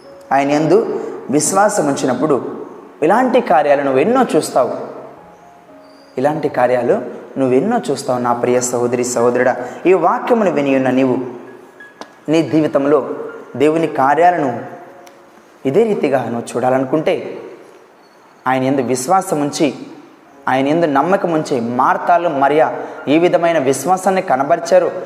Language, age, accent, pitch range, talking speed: Telugu, 20-39, native, 135-220 Hz, 100 wpm